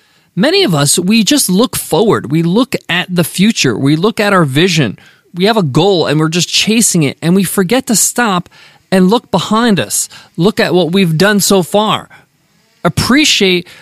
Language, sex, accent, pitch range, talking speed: English, male, American, 160-220 Hz, 185 wpm